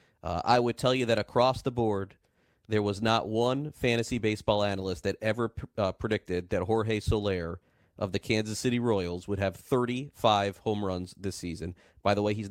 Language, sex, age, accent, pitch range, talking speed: English, male, 30-49, American, 100-120 Hz, 185 wpm